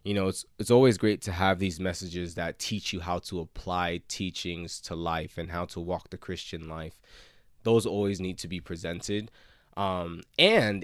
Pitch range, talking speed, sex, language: 85-100 Hz, 190 wpm, male, English